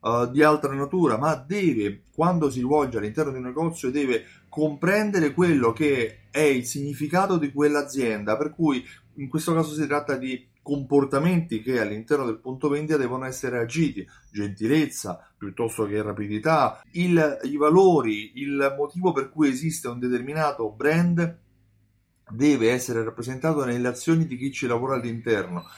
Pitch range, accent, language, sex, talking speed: 115-150 Hz, native, Italian, male, 145 wpm